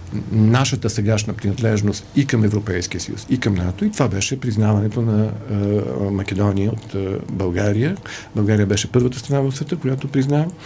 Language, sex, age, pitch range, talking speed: Bulgarian, male, 50-69, 100-115 Hz, 160 wpm